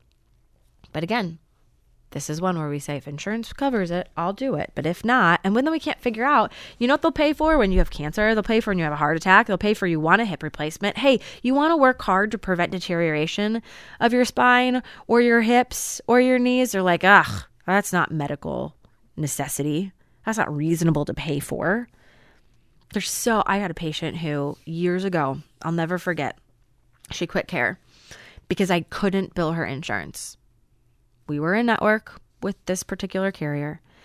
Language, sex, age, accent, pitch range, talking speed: English, female, 20-39, American, 155-215 Hz, 195 wpm